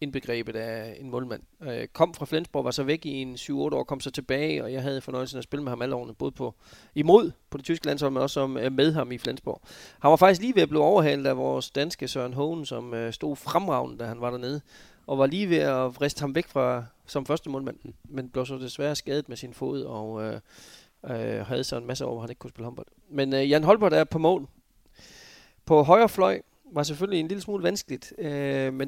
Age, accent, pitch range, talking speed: 30-49, native, 125-150 Hz, 235 wpm